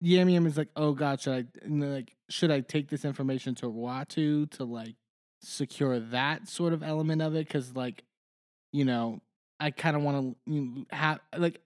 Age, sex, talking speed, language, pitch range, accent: 20-39, male, 170 wpm, English, 120-150 Hz, American